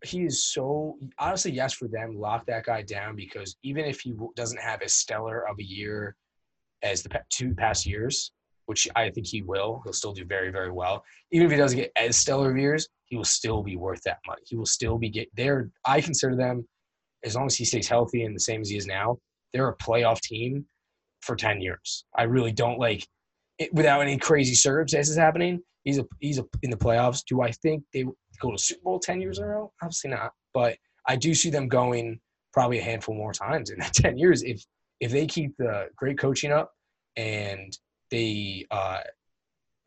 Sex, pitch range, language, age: male, 105-140 Hz, English, 20-39